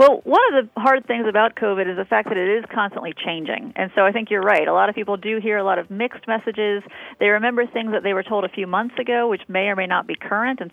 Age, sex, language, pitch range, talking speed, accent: 40-59, female, English, 175-220 Hz, 290 wpm, American